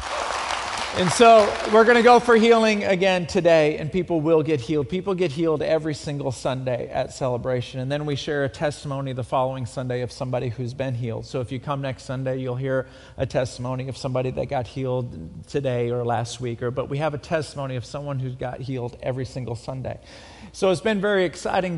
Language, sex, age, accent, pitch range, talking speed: English, male, 40-59, American, 125-180 Hz, 205 wpm